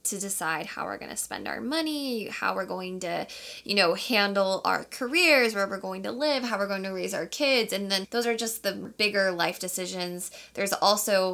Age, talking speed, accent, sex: 10-29, 210 wpm, American, female